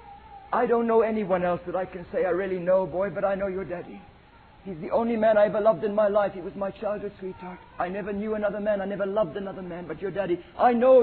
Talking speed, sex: 260 wpm, male